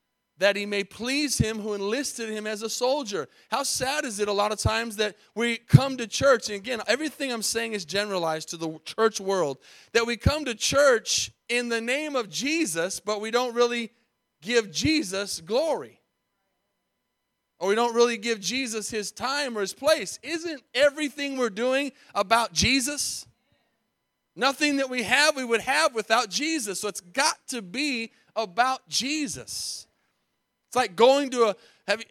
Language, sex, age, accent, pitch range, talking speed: English, male, 30-49, American, 215-270 Hz, 165 wpm